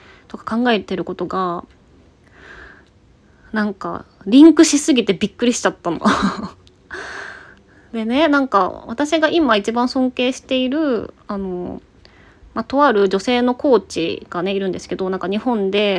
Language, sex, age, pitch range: Japanese, female, 20-39, 185-260 Hz